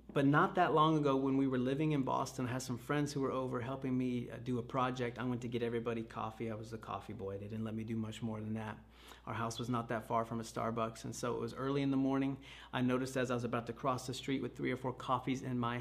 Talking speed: 290 wpm